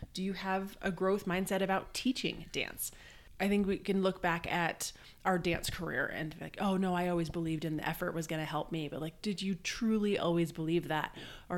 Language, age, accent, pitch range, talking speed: English, 30-49, American, 165-195 Hz, 225 wpm